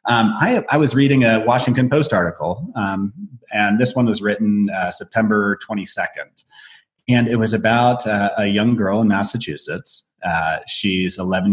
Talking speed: 160 wpm